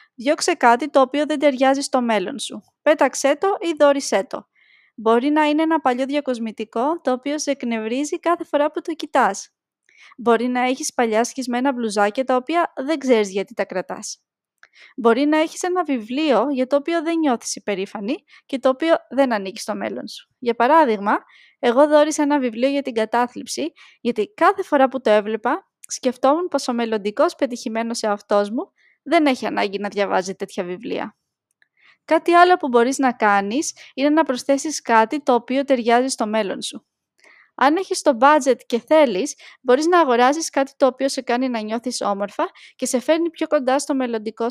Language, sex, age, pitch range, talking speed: Greek, female, 20-39, 230-300 Hz, 175 wpm